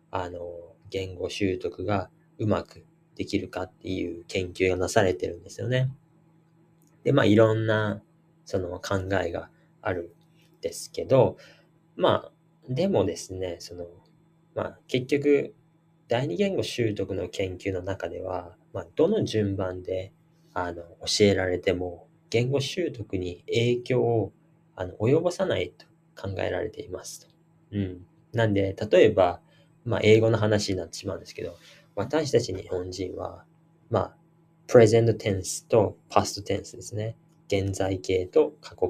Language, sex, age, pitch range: Japanese, male, 20-39, 95-165 Hz